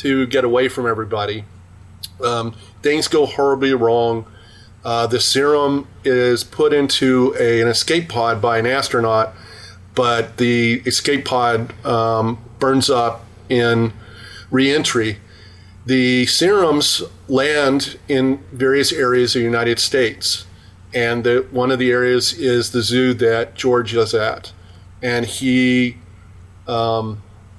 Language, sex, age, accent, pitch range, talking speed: English, male, 30-49, American, 105-125 Hz, 120 wpm